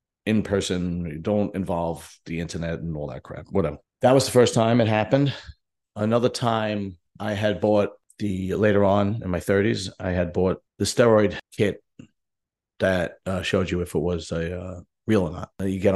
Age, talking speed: 40-59, 185 wpm